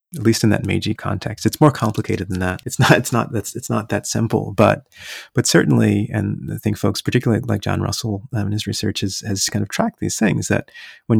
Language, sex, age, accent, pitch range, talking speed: English, male, 30-49, American, 100-115 Hz, 230 wpm